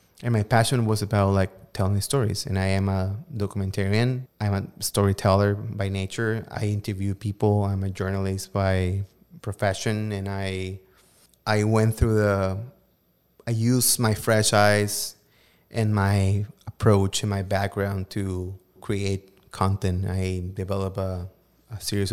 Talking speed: 140 wpm